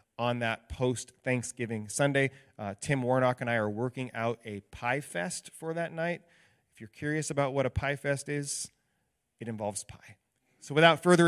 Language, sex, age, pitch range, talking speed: English, male, 30-49, 115-140 Hz, 175 wpm